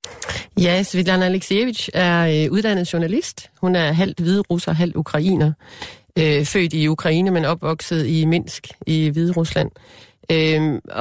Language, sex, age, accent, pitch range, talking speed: Danish, female, 30-49, native, 150-175 Hz, 140 wpm